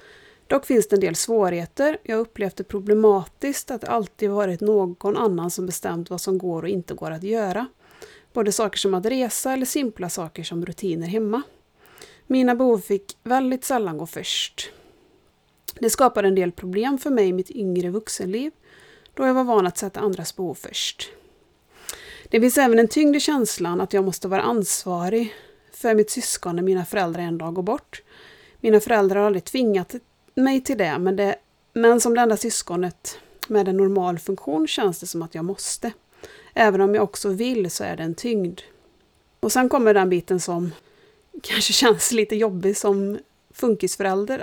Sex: female